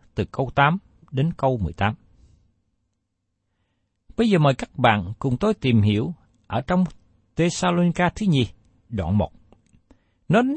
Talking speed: 140 wpm